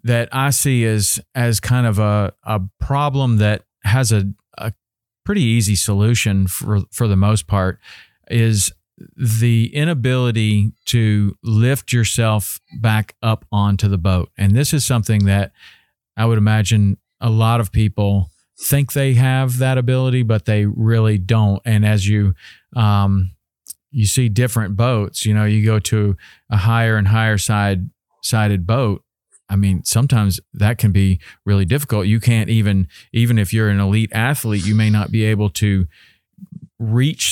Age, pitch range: 40-59, 100-115 Hz